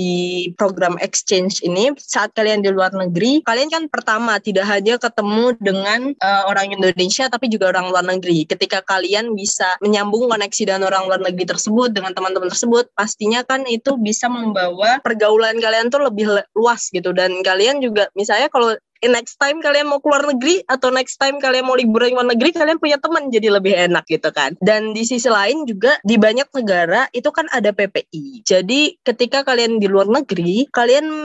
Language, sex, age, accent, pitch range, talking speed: Indonesian, female, 20-39, native, 195-250 Hz, 185 wpm